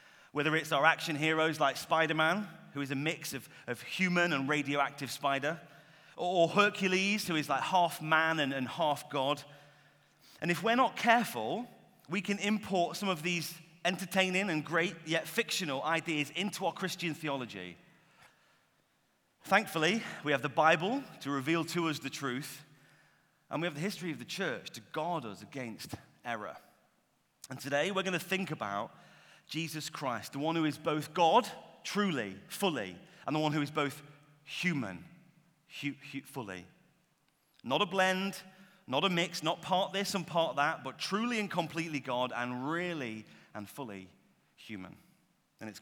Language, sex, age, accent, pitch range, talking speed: English, male, 30-49, British, 140-180 Hz, 160 wpm